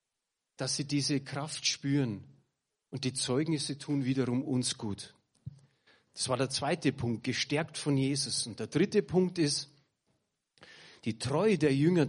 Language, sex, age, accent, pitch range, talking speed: German, male, 40-59, German, 125-150 Hz, 145 wpm